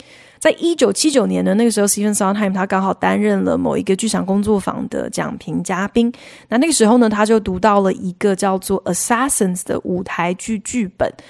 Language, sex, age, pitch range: Chinese, female, 20-39, 190-250 Hz